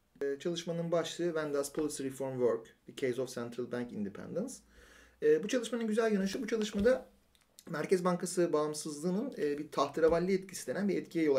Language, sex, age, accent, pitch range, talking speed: Turkish, male, 40-59, native, 135-205 Hz, 170 wpm